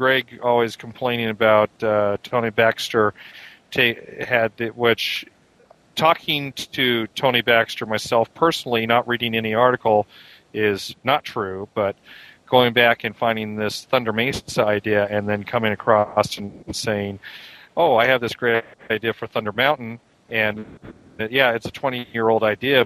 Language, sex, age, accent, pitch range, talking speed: English, male, 40-59, American, 105-120 Hz, 145 wpm